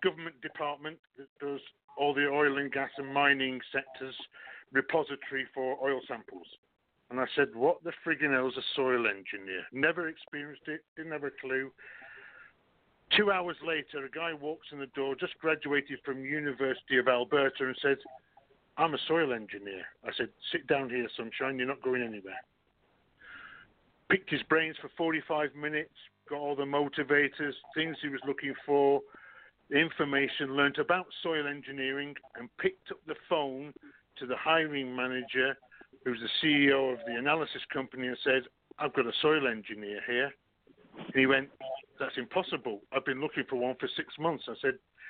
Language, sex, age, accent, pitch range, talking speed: English, male, 50-69, British, 130-150 Hz, 165 wpm